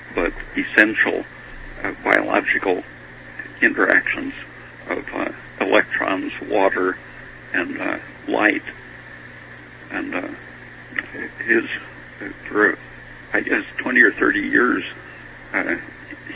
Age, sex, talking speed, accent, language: 60-79, male, 85 wpm, American, English